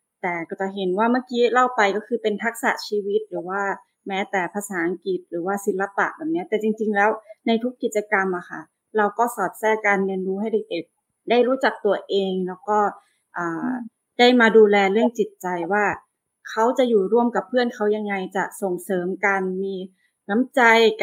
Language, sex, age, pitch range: Thai, female, 20-39, 190-230 Hz